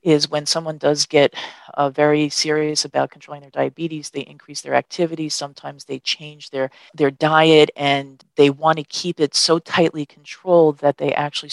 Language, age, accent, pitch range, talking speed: English, 40-59, American, 140-150 Hz, 175 wpm